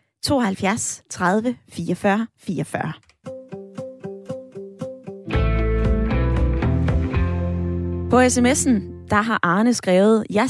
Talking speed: 65 wpm